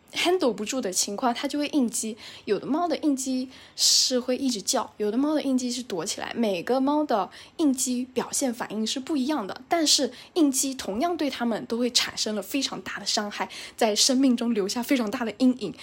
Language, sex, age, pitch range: Chinese, female, 10-29, 215-285 Hz